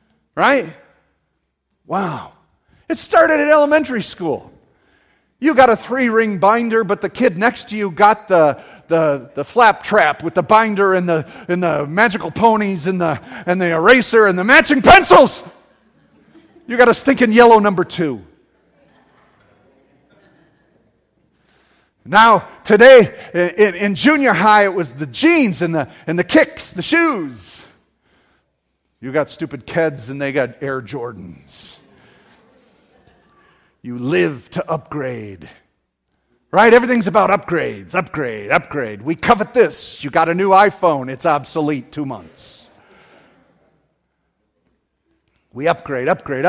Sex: male